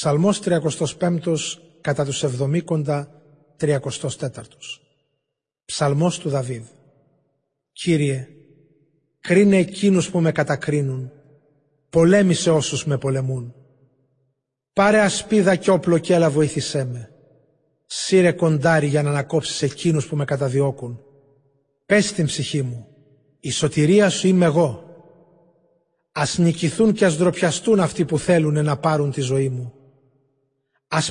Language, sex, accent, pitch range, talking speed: Greek, male, native, 140-175 Hz, 115 wpm